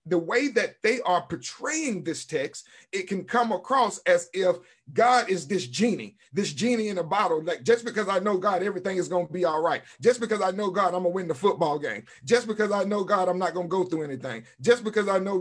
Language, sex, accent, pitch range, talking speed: English, male, American, 190-245 Hz, 250 wpm